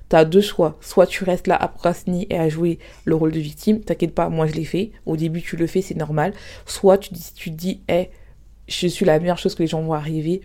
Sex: female